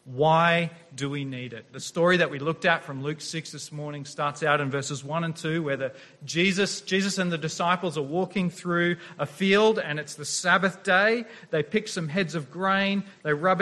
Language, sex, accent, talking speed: English, male, Australian, 205 wpm